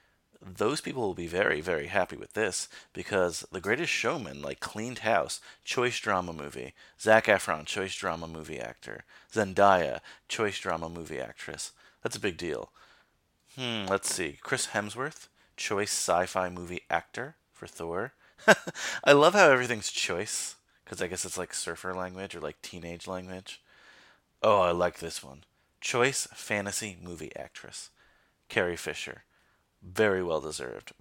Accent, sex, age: American, male, 30-49